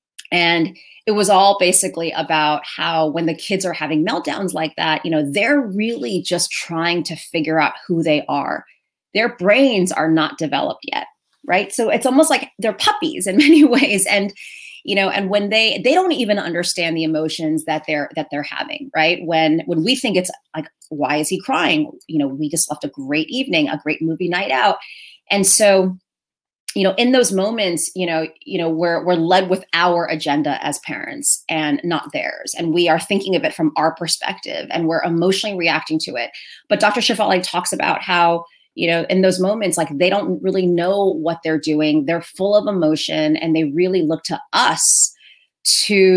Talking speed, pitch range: 195 wpm, 160-205 Hz